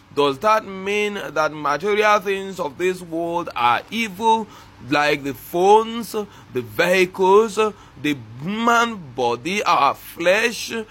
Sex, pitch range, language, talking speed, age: male, 145-220 Hz, English, 115 wpm, 30-49